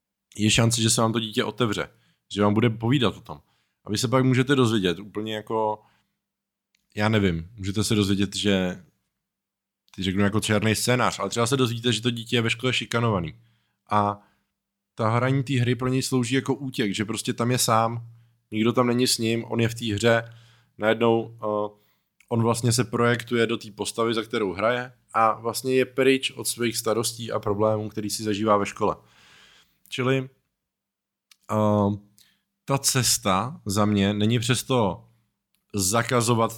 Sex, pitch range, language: male, 105-125 Hz, Czech